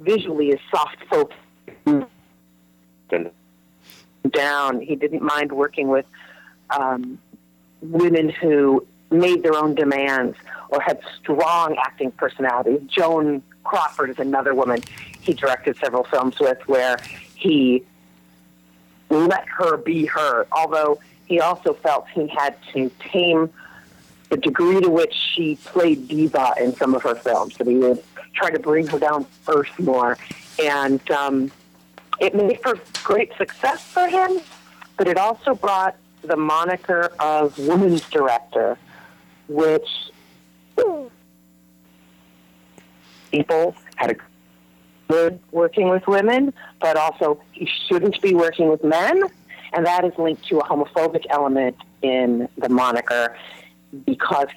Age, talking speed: 40-59, 125 wpm